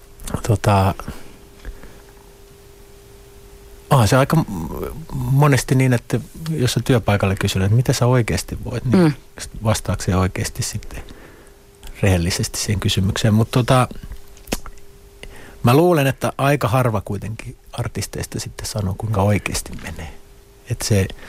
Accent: native